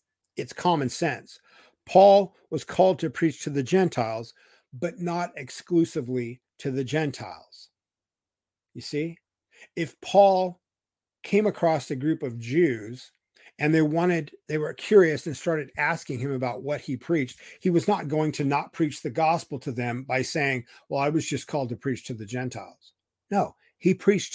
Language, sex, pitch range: English, male, 130-170 Hz